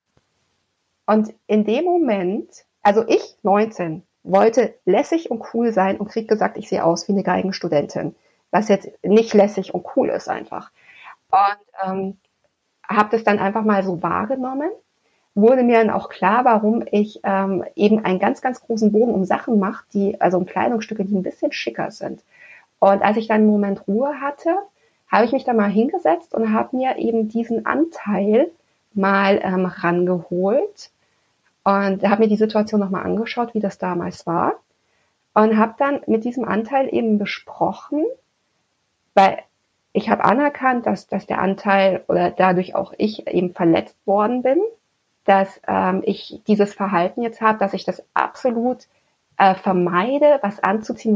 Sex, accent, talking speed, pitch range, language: female, German, 160 wpm, 195-235 Hz, German